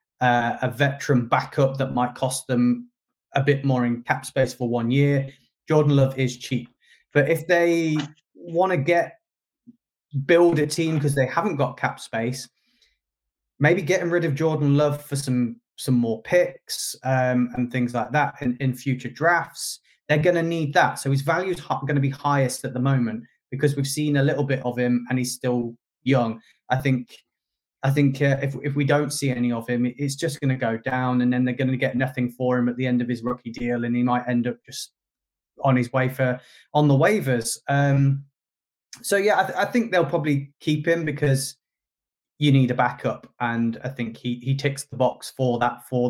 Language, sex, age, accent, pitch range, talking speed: English, male, 20-39, British, 125-145 Hz, 205 wpm